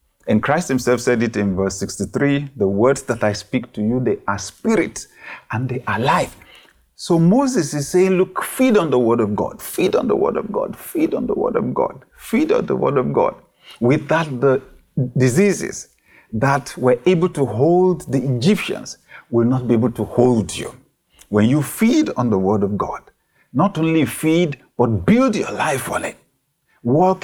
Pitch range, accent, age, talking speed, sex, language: 115-170 Hz, Nigerian, 50-69, 190 wpm, male, English